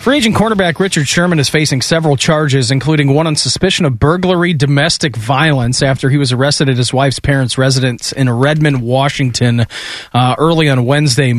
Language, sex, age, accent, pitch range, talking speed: English, male, 40-59, American, 135-160 Hz, 175 wpm